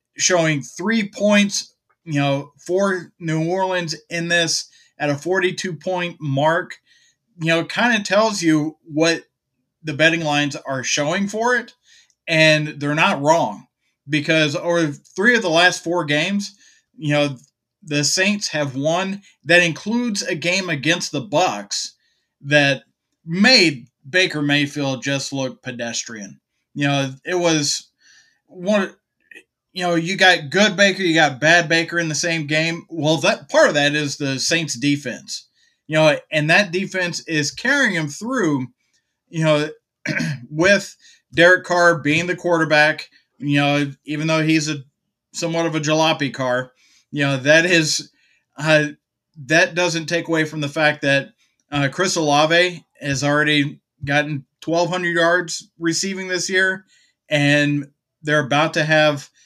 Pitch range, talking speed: 145-180 Hz, 150 wpm